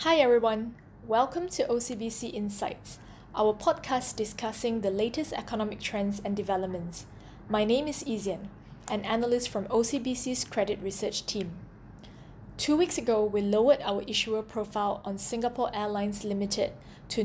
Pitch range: 205-245 Hz